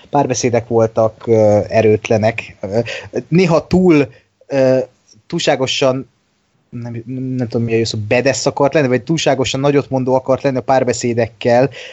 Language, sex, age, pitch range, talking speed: Hungarian, male, 20-39, 120-140 Hz, 125 wpm